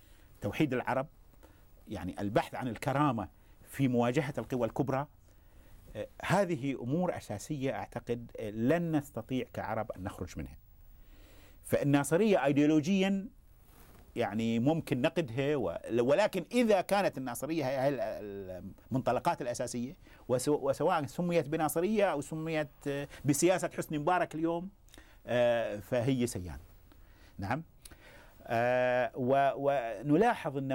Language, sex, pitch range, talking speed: Arabic, male, 105-150 Hz, 90 wpm